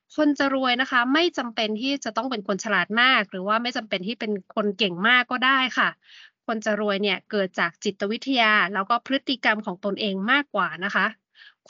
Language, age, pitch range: Thai, 20-39, 200-245 Hz